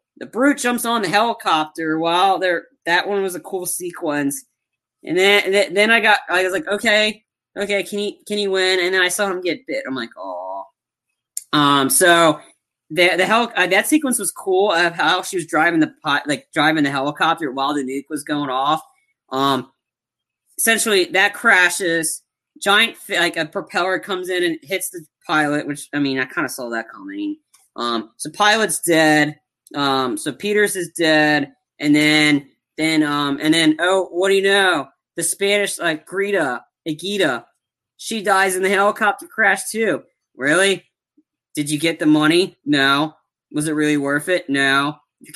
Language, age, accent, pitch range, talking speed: English, 20-39, American, 145-200 Hz, 175 wpm